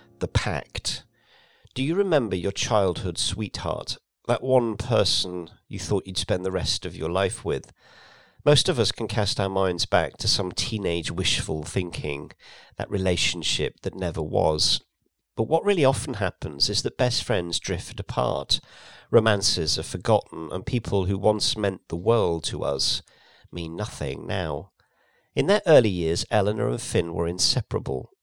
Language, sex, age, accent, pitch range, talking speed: English, male, 50-69, British, 90-120 Hz, 155 wpm